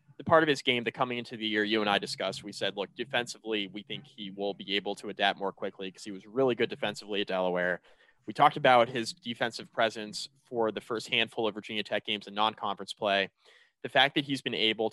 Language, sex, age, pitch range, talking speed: English, male, 20-39, 100-125 Hz, 235 wpm